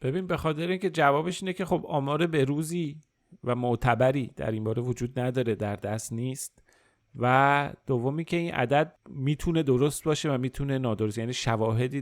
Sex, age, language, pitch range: male, 30-49, Persian, 115-155 Hz